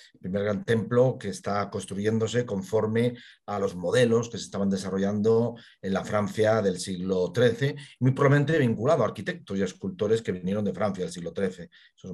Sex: male